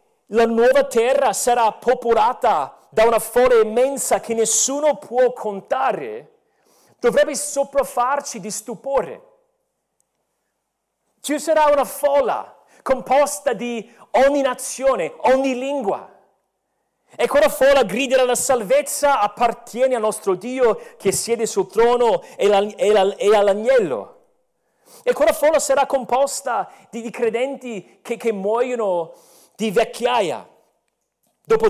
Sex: male